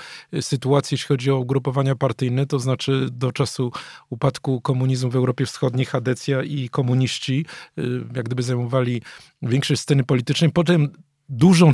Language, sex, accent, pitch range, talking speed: Polish, male, native, 135-155 Hz, 135 wpm